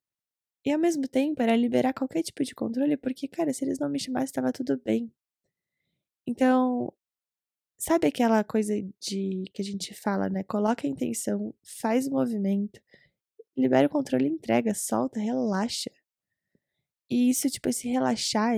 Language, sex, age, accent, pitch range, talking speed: Portuguese, female, 10-29, Brazilian, 195-250 Hz, 150 wpm